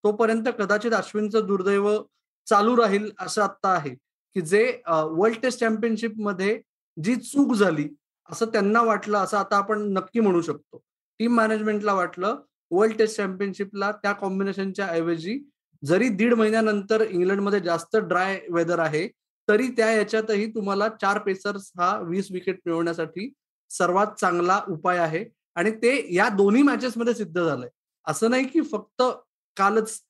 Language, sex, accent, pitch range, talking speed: Marathi, male, native, 195-245 Hz, 100 wpm